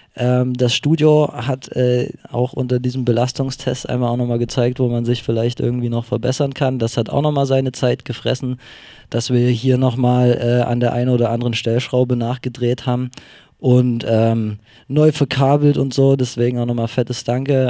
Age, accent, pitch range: 20-39, German, 120-140 Hz